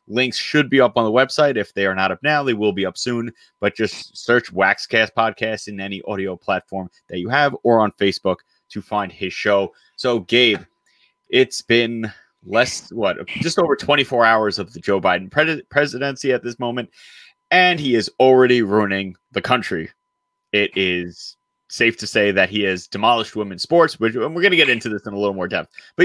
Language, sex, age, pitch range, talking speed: English, male, 30-49, 105-135 Hz, 200 wpm